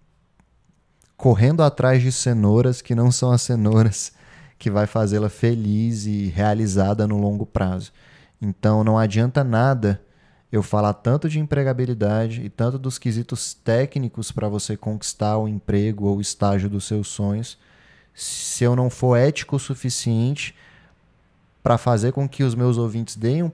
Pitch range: 105-125 Hz